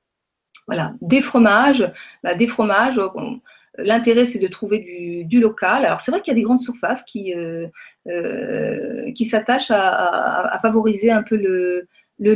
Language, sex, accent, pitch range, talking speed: French, female, French, 175-230 Hz, 175 wpm